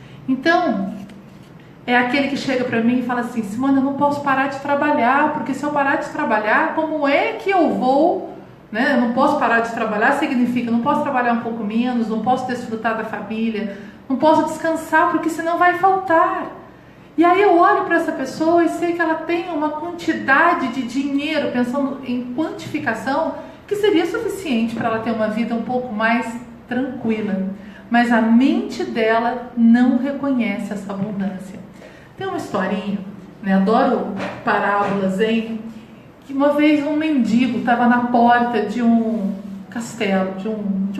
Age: 40-59